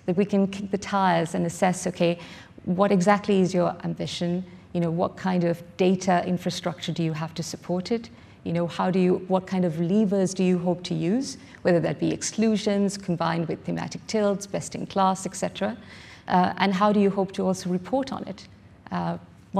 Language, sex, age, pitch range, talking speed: English, female, 50-69, 170-195 Hz, 200 wpm